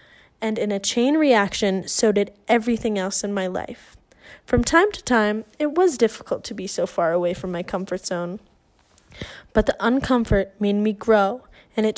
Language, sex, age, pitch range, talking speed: English, female, 10-29, 205-240 Hz, 180 wpm